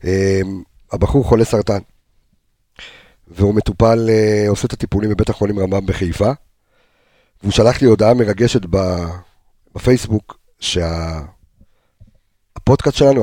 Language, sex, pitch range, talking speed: Hebrew, male, 100-120 Hz, 105 wpm